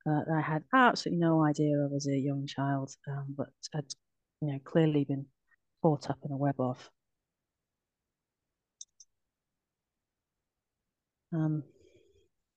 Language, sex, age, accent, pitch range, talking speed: English, female, 40-59, British, 140-175 Hz, 125 wpm